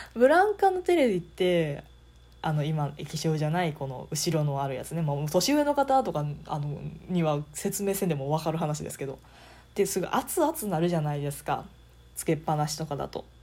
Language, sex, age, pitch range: Japanese, female, 20-39, 145-190 Hz